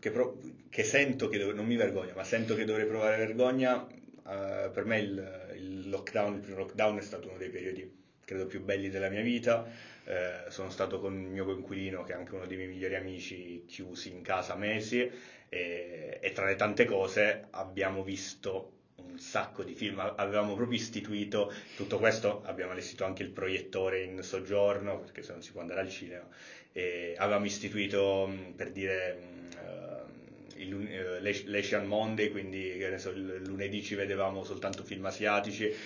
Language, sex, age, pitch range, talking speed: Italian, male, 30-49, 95-110 Hz, 180 wpm